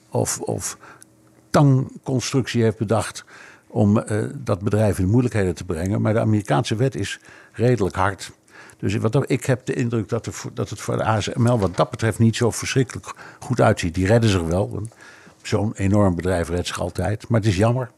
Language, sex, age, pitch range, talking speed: Dutch, male, 60-79, 100-125 Hz, 175 wpm